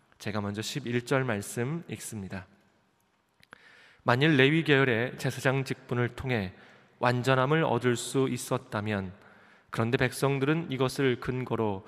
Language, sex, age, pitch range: Korean, male, 20-39, 115-135 Hz